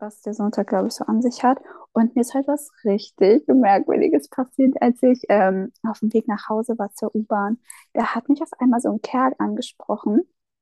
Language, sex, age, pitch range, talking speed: German, female, 20-39, 215-260 Hz, 210 wpm